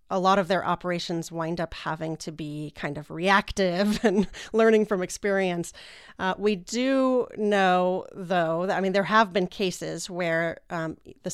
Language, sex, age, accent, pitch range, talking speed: English, female, 30-49, American, 165-195 Hz, 170 wpm